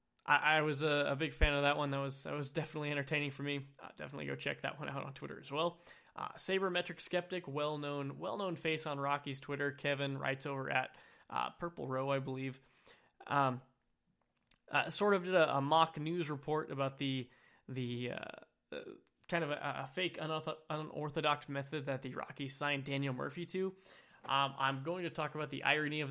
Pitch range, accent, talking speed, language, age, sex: 135-155 Hz, American, 195 wpm, English, 20-39, male